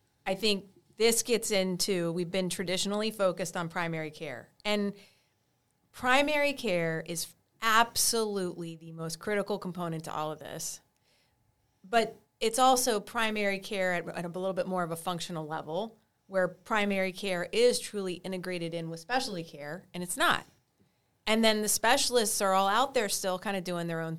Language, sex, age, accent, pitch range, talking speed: English, female, 30-49, American, 170-210 Hz, 165 wpm